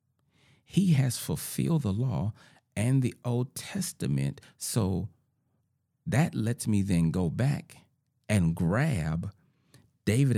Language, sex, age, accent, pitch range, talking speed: English, male, 40-59, American, 115-140 Hz, 110 wpm